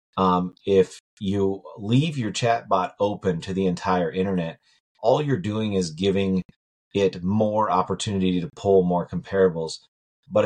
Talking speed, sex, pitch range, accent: 140 wpm, male, 95-115 Hz, American